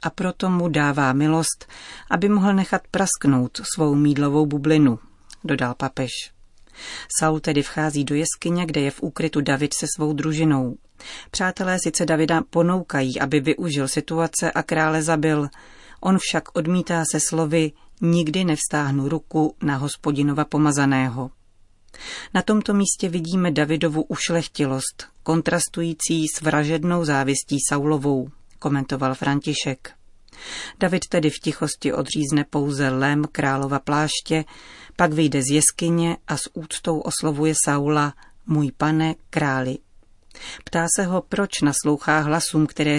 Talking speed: 125 wpm